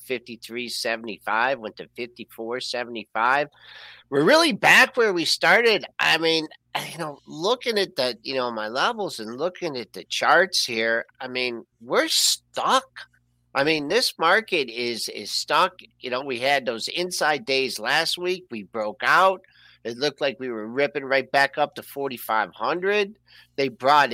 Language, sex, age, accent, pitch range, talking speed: English, male, 50-69, American, 120-185 Hz, 155 wpm